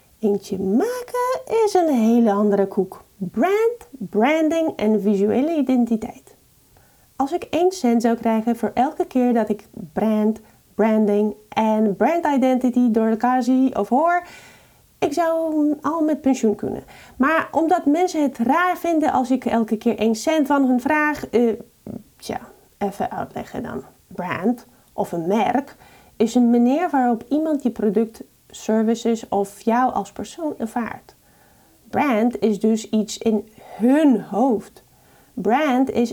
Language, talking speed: Dutch, 140 wpm